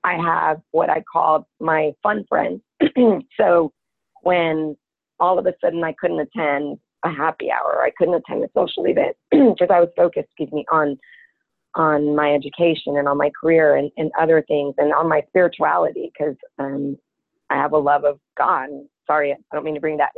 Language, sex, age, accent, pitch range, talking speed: English, female, 30-49, American, 150-170 Hz, 190 wpm